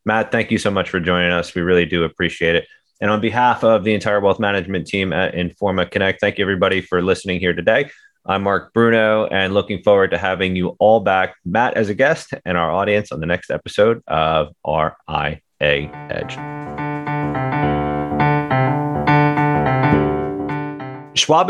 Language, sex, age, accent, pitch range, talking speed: English, male, 30-49, American, 85-110 Hz, 160 wpm